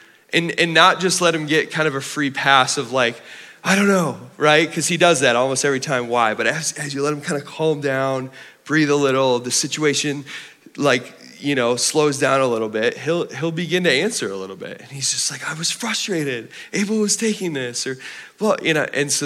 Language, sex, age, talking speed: English, male, 20-39, 230 wpm